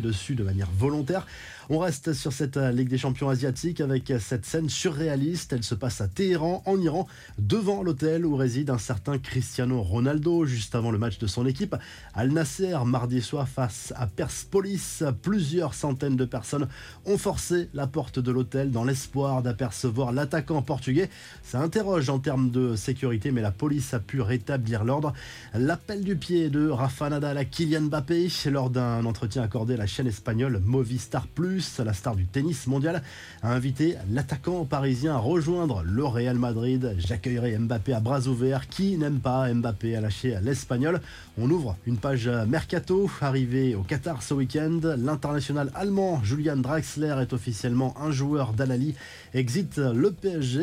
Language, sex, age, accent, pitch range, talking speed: French, male, 20-39, French, 125-155 Hz, 165 wpm